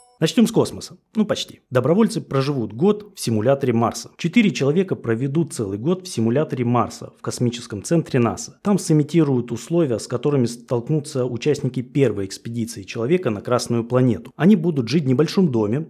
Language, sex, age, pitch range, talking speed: Russian, male, 20-39, 115-160 Hz, 160 wpm